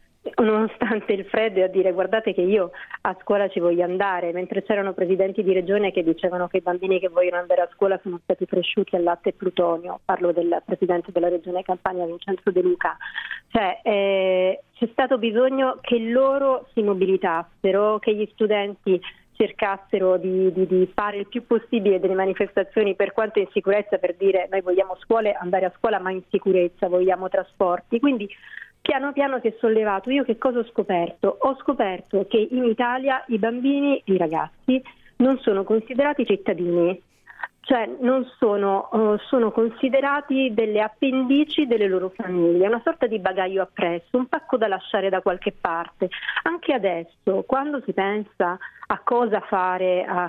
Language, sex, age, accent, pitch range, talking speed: Italian, female, 30-49, native, 185-230 Hz, 165 wpm